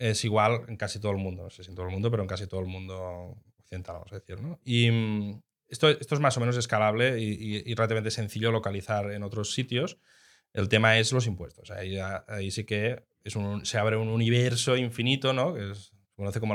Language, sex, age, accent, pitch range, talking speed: Spanish, male, 20-39, Spanish, 105-125 Hz, 230 wpm